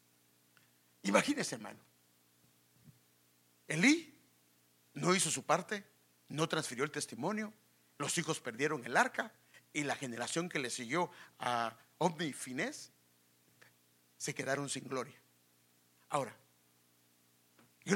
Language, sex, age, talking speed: English, male, 60-79, 105 wpm